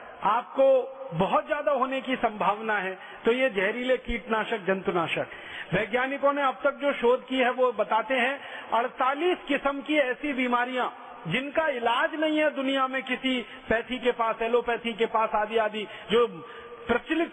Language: Hindi